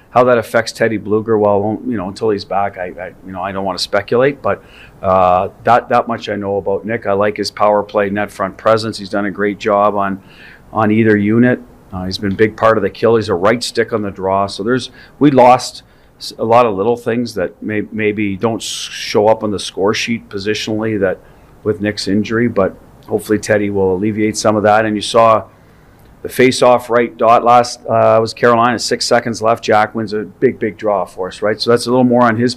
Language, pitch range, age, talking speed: English, 100-115 Hz, 40-59, 230 wpm